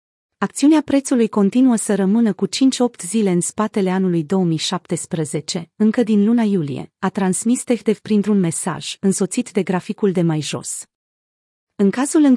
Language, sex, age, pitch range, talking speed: Romanian, female, 30-49, 180-225 Hz, 145 wpm